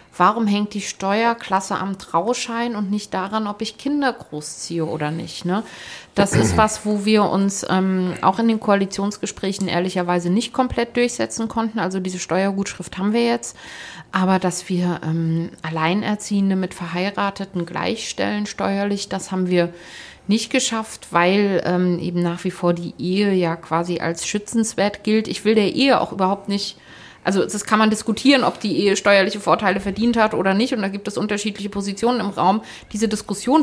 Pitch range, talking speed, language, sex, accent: 180-225 Hz, 170 wpm, German, female, German